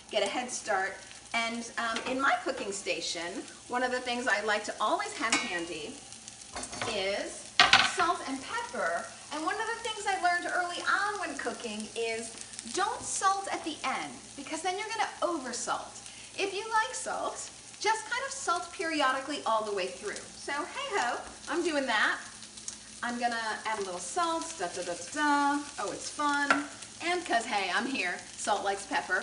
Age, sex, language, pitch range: 40-59, female, English, 230-350 Hz